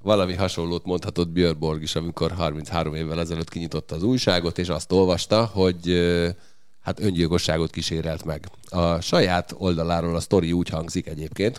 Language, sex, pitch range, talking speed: Hungarian, male, 85-105 Hz, 140 wpm